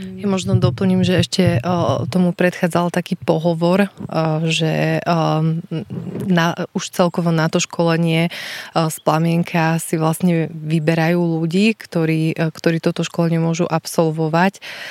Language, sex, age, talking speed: Slovak, female, 20-39, 135 wpm